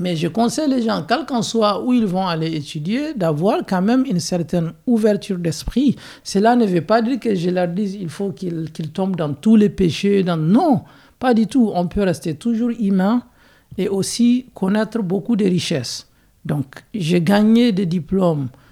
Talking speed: 190 wpm